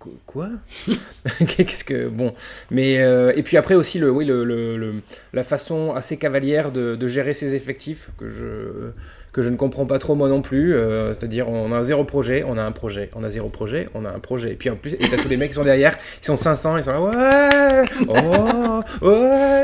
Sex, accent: male, French